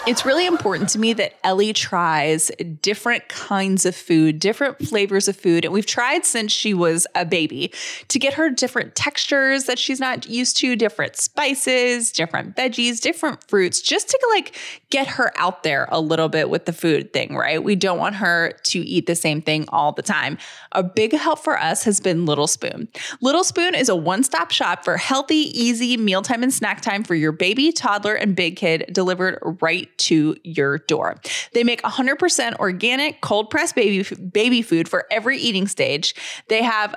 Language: English